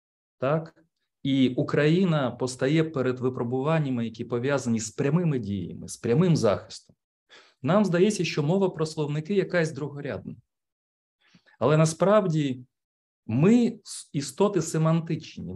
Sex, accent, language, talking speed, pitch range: male, native, Ukrainian, 105 wpm, 110-160 Hz